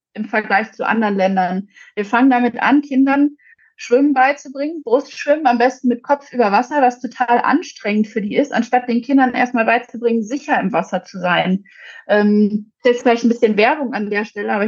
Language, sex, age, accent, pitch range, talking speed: German, female, 30-49, German, 220-265 Hz, 190 wpm